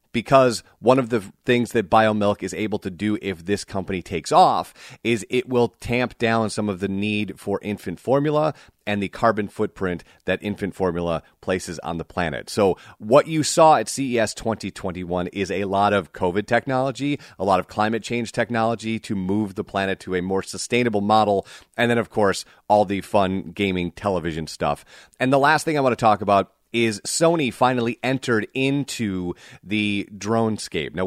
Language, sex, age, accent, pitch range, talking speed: English, male, 30-49, American, 100-125 Hz, 185 wpm